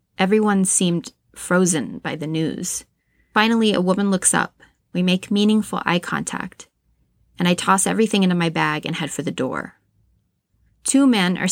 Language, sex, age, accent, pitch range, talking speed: English, female, 20-39, American, 160-195 Hz, 160 wpm